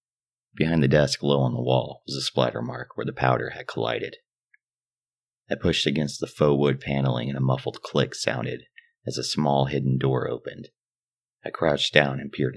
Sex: male